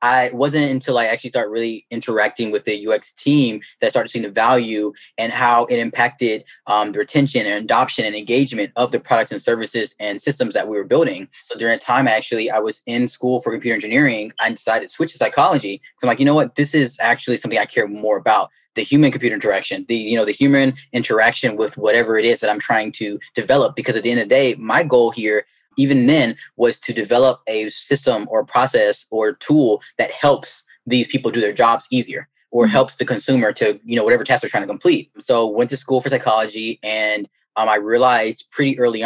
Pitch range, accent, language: 110-130 Hz, American, English